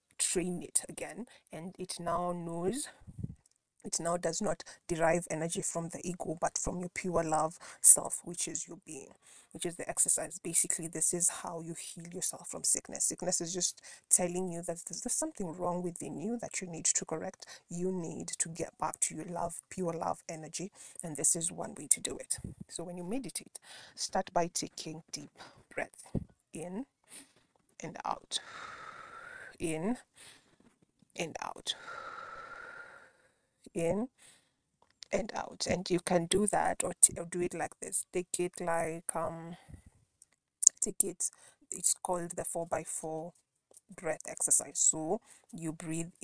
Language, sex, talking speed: English, female, 155 wpm